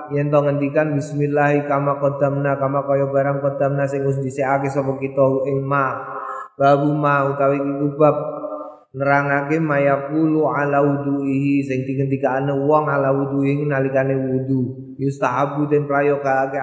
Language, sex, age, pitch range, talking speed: Indonesian, male, 20-39, 140-165 Hz, 135 wpm